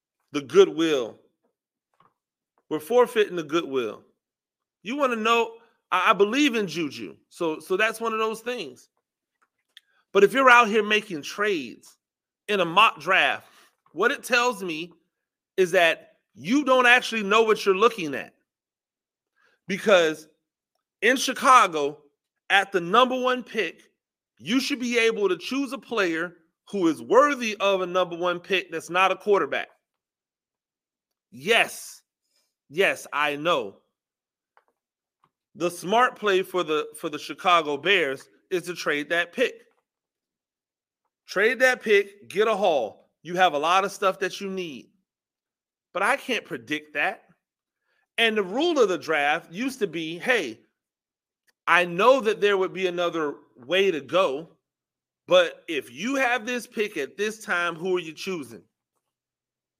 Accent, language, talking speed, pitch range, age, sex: American, English, 145 wpm, 175-250 Hz, 30-49, male